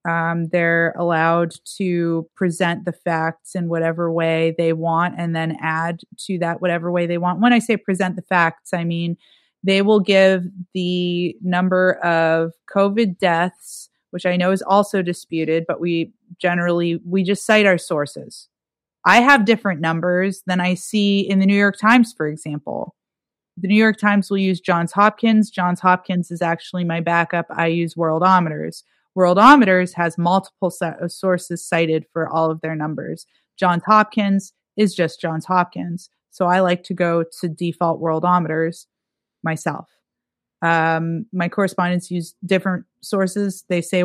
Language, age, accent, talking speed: English, 30-49, American, 160 wpm